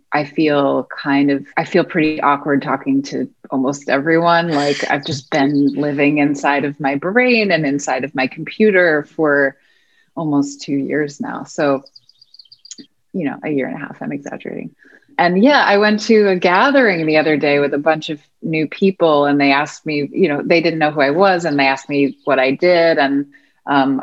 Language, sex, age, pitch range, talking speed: English, female, 30-49, 140-165 Hz, 195 wpm